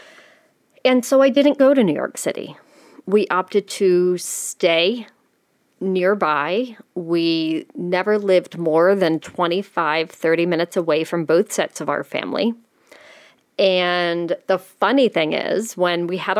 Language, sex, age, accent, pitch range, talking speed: English, female, 40-59, American, 170-215 Hz, 135 wpm